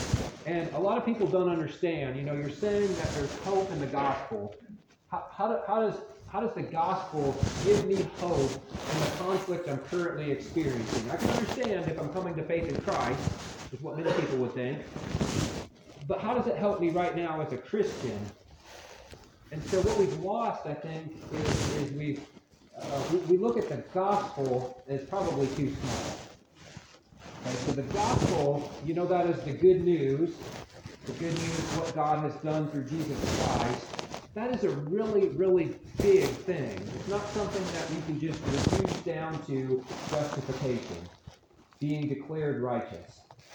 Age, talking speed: 40-59, 170 wpm